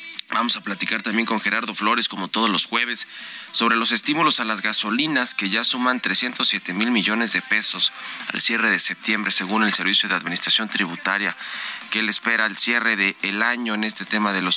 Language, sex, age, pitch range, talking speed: Spanish, male, 30-49, 95-110 Hz, 200 wpm